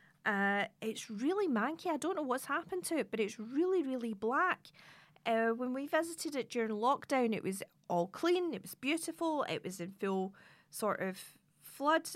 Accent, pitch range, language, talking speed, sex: British, 185-240 Hz, English, 185 wpm, female